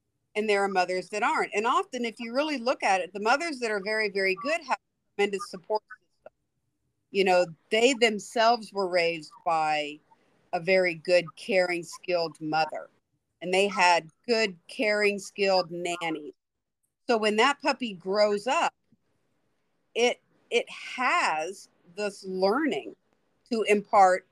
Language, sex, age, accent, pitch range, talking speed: English, female, 50-69, American, 175-225 Hz, 140 wpm